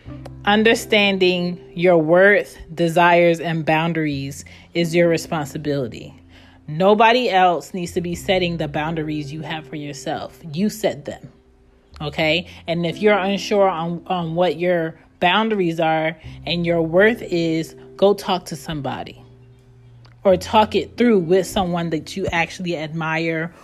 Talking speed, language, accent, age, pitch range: 135 wpm, English, American, 30-49, 155-190 Hz